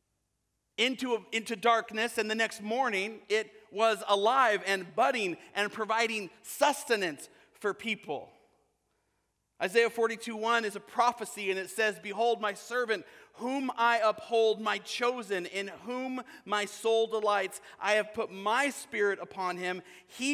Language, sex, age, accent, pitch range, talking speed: English, male, 40-59, American, 205-245 Hz, 140 wpm